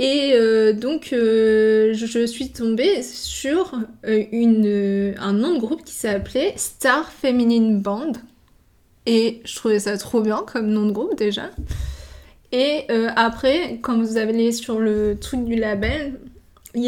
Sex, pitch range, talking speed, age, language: female, 210-245 Hz, 155 wpm, 20-39, French